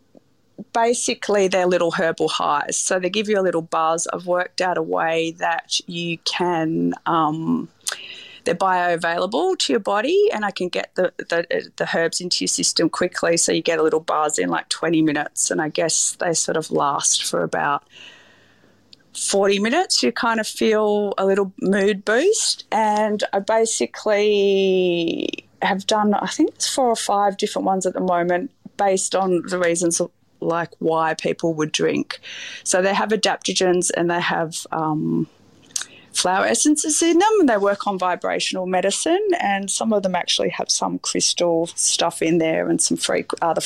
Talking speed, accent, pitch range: 175 wpm, Australian, 165-210 Hz